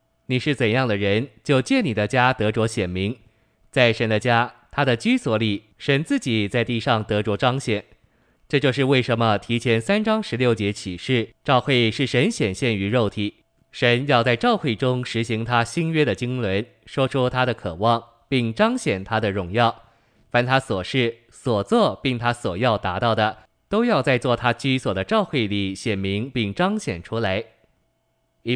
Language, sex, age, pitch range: Chinese, male, 20-39, 105-130 Hz